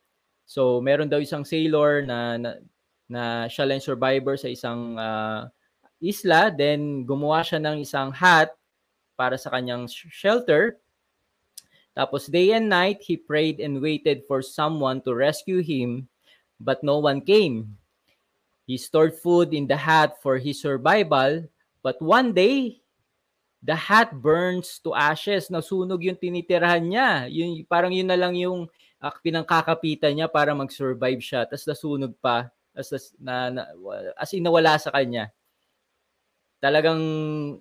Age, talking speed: 20-39, 135 wpm